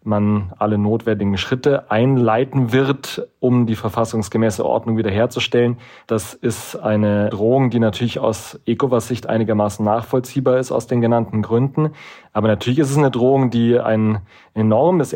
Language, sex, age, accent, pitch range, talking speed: German, male, 30-49, German, 110-130 Hz, 140 wpm